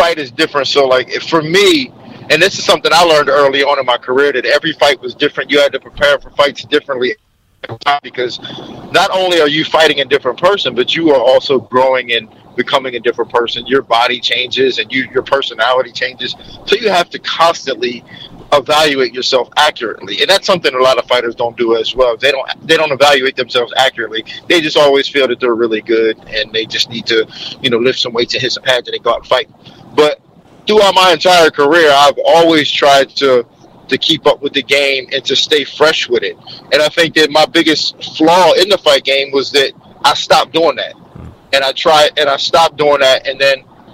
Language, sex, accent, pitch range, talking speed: English, male, American, 130-180 Hz, 215 wpm